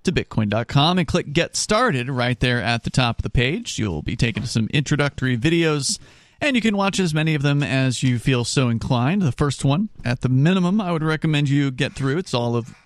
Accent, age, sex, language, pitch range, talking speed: American, 40-59, male, English, 120-155 Hz, 225 wpm